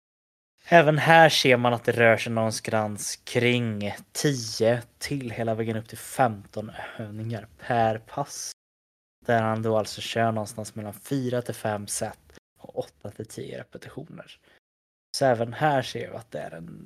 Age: 20-39